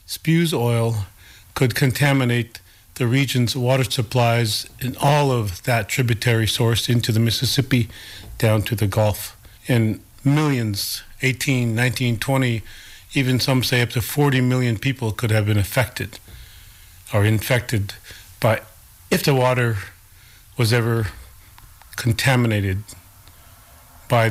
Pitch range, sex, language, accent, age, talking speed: 105-130 Hz, male, English, American, 40-59, 120 wpm